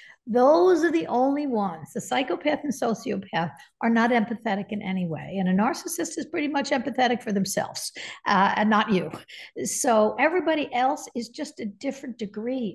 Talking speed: 170 wpm